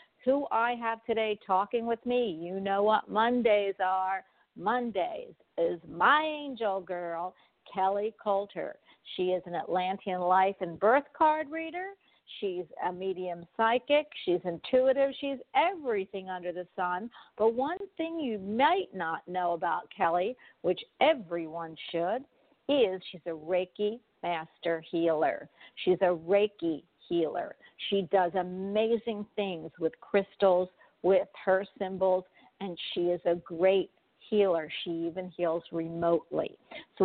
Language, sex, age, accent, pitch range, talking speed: English, female, 50-69, American, 180-235 Hz, 130 wpm